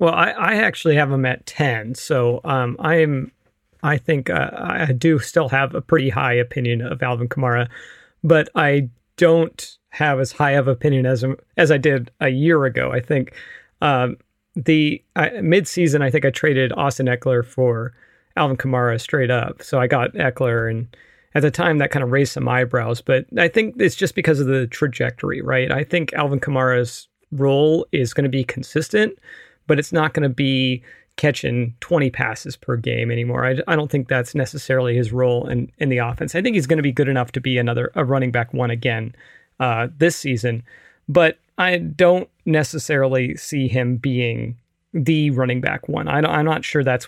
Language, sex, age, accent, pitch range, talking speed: English, male, 40-59, American, 125-155 Hz, 190 wpm